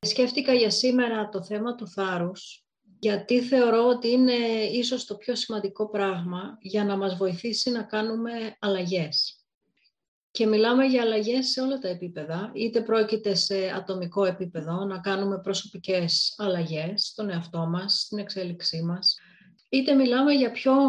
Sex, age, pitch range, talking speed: female, 30-49, 185-240 Hz, 145 wpm